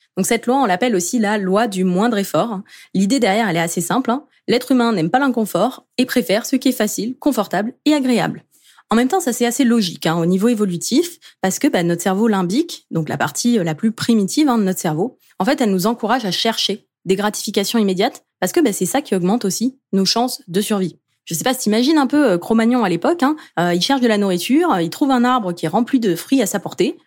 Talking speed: 245 wpm